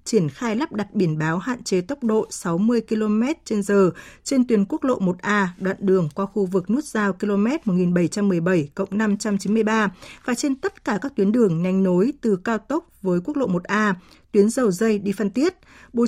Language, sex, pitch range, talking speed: Vietnamese, female, 190-235 Hz, 190 wpm